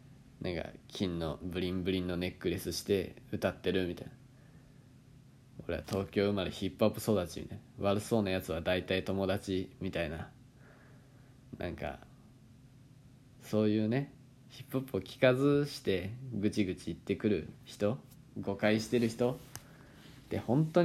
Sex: male